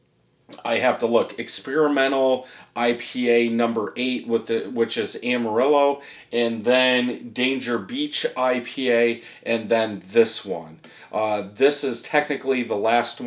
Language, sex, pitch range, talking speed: English, male, 110-135 Hz, 125 wpm